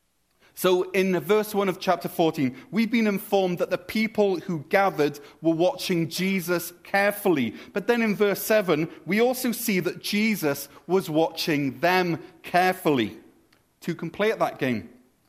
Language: English